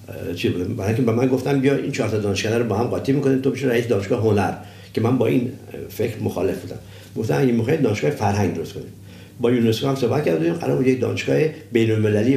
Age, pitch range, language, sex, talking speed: 50-69, 100-130 Hz, Persian, male, 210 wpm